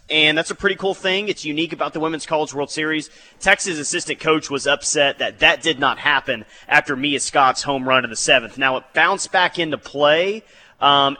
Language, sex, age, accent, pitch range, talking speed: English, male, 30-49, American, 130-165 Hz, 210 wpm